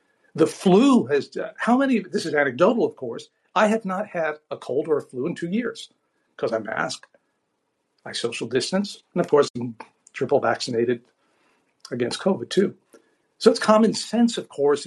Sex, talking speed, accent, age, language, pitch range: male, 180 wpm, American, 50-69, English, 135-205 Hz